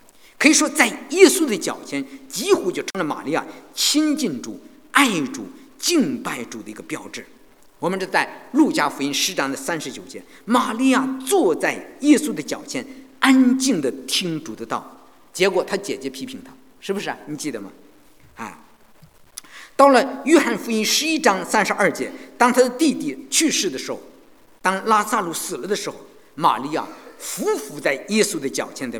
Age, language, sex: 50-69, English, male